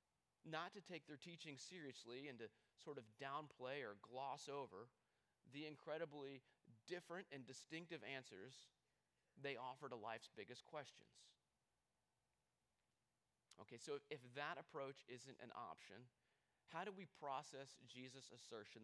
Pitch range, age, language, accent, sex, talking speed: 125-160 Hz, 30-49, English, American, male, 125 wpm